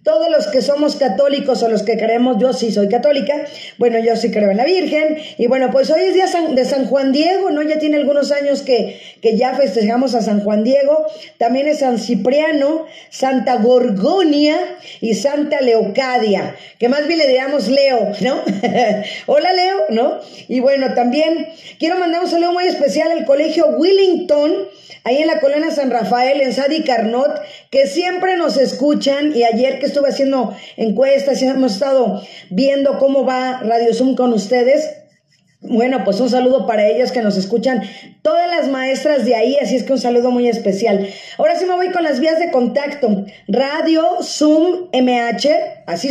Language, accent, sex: Spanish, Mexican, female